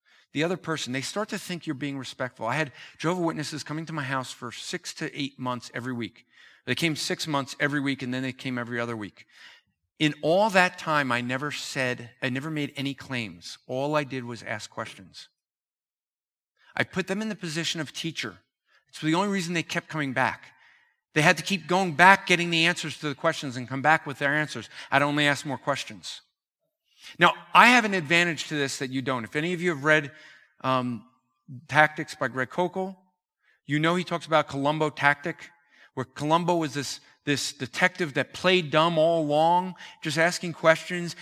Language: English